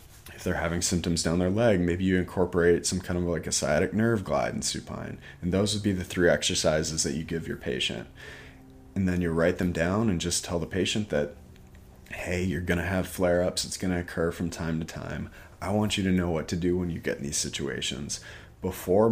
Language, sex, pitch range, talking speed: English, male, 85-100 Hz, 220 wpm